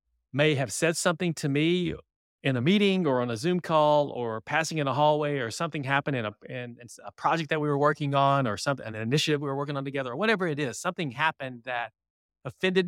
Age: 30-49